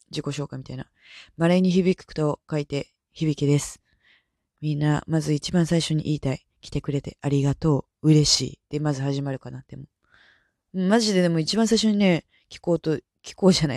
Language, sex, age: Japanese, female, 20-39